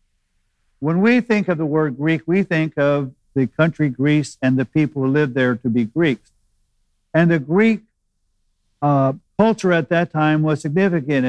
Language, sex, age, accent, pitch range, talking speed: English, male, 50-69, American, 125-165 Hz, 170 wpm